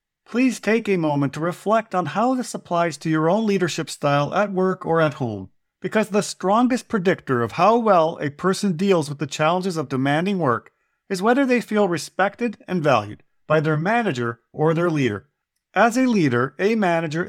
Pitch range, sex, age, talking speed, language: 150-215 Hz, male, 50-69, 185 wpm, English